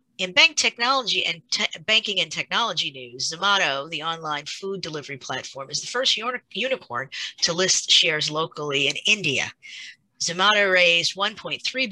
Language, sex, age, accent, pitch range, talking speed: English, female, 50-69, American, 145-195 Hz, 140 wpm